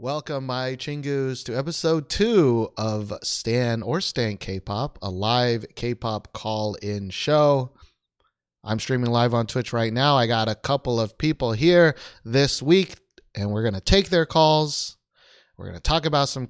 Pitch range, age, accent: 105-145 Hz, 30-49, American